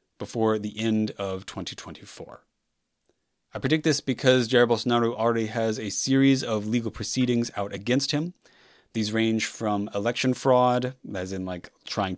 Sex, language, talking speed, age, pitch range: male, English, 150 wpm, 30-49, 100-125 Hz